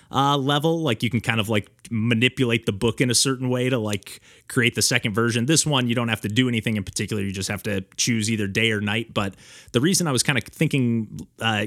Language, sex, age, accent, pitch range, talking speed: English, male, 30-49, American, 105-125 Hz, 250 wpm